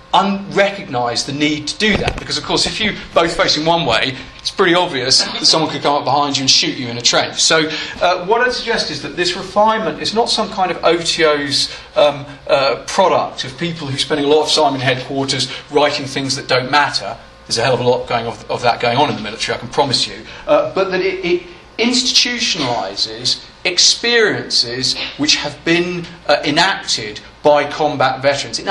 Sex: male